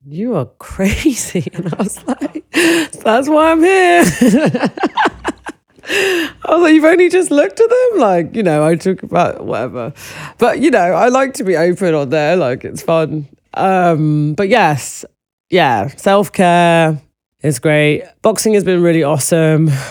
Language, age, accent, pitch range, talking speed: English, 30-49, British, 135-170 Hz, 155 wpm